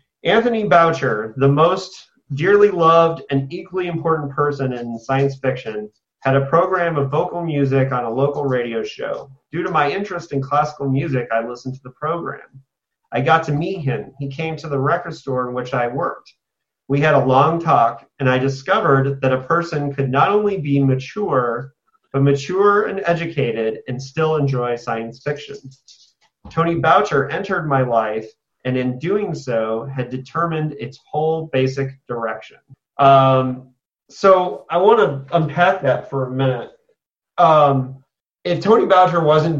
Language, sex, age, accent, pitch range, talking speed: English, male, 30-49, American, 130-160 Hz, 160 wpm